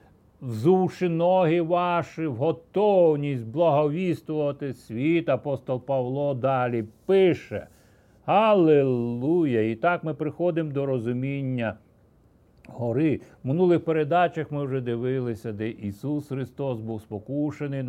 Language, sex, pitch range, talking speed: Ukrainian, male, 120-160 Hz, 100 wpm